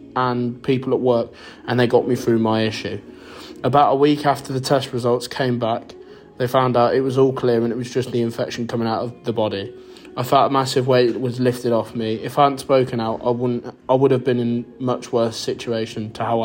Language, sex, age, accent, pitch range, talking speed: English, male, 20-39, British, 120-130 Hz, 235 wpm